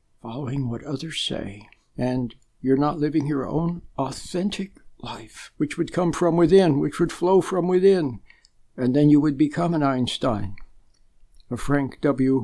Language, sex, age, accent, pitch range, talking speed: English, male, 60-79, American, 125-160 Hz, 155 wpm